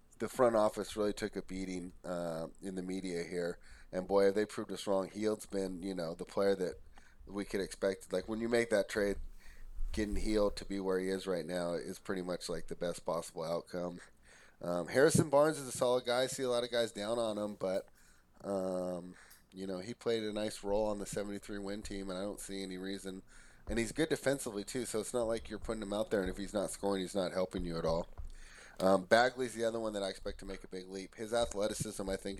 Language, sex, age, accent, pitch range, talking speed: English, male, 30-49, American, 90-100 Hz, 240 wpm